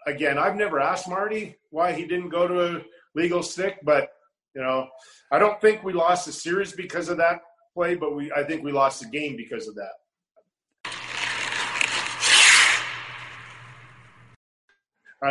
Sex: male